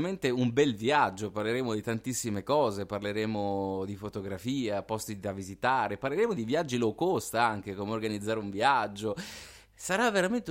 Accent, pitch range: native, 105-130 Hz